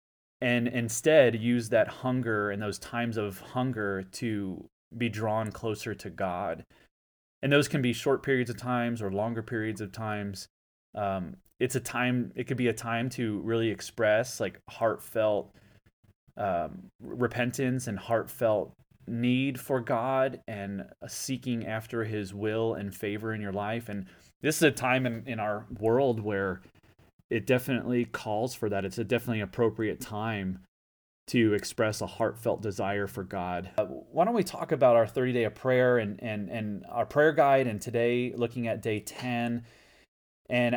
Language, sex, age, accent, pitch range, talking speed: English, male, 20-39, American, 105-125 Hz, 165 wpm